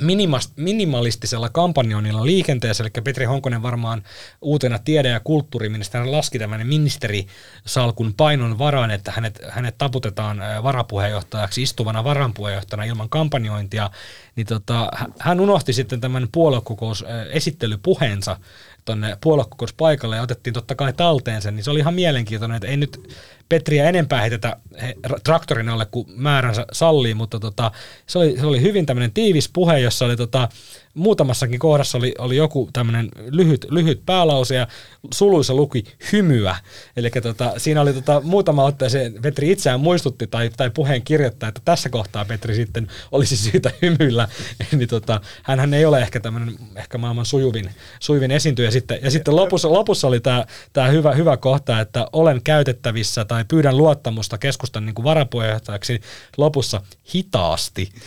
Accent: native